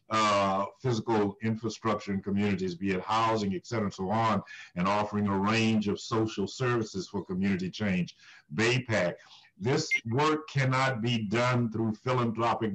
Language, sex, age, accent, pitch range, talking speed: English, male, 60-79, American, 105-135 Hz, 145 wpm